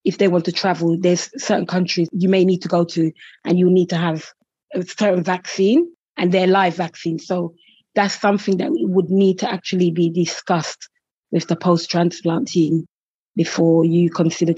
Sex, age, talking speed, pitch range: female, 20-39, 175 wpm, 170-210 Hz